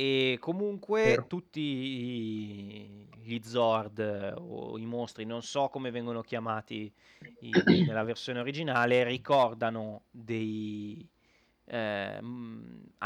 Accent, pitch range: native, 110-135 Hz